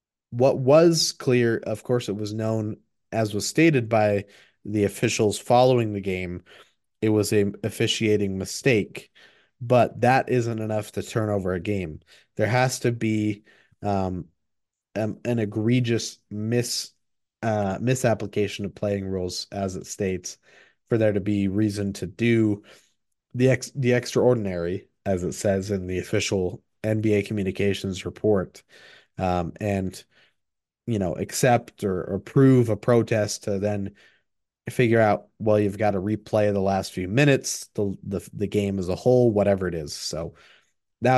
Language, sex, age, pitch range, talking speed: English, male, 30-49, 100-115 Hz, 150 wpm